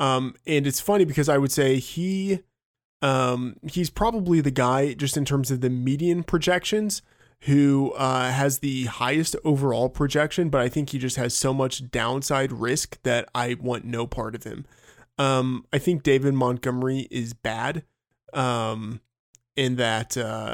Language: English